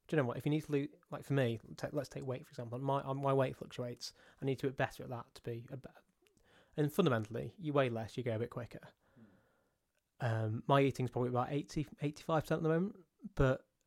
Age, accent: 20-39, British